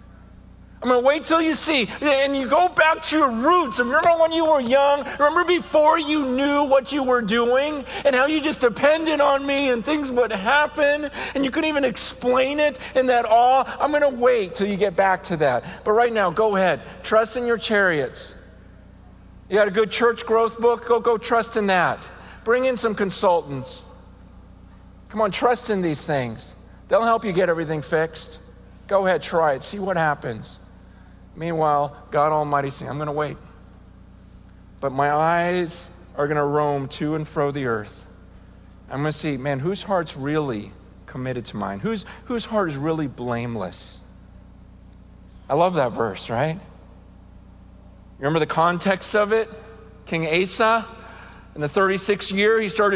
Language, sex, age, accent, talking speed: English, male, 50-69, American, 180 wpm